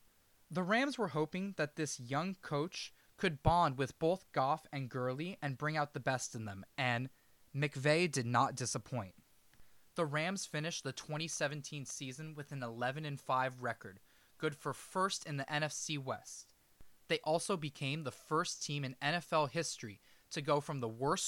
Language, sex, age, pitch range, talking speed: English, male, 20-39, 125-165 Hz, 165 wpm